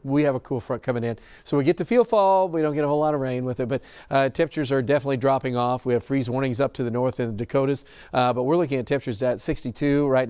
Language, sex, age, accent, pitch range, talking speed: English, male, 40-59, American, 130-155 Hz, 290 wpm